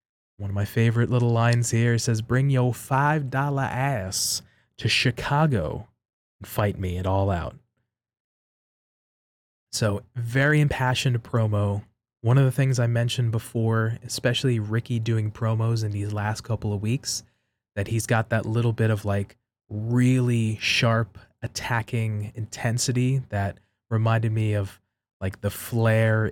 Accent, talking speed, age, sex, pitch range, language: American, 135 wpm, 20-39, male, 100-120 Hz, English